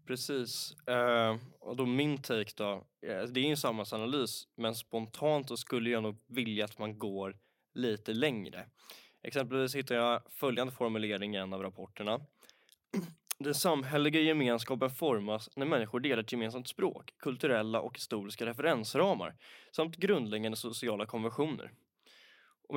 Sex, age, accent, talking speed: male, 10-29, native, 130 wpm